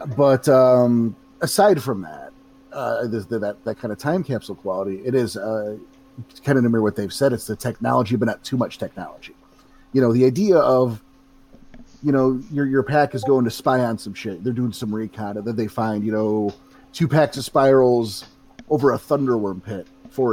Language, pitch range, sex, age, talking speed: English, 125-170 Hz, male, 30-49, 200 wpm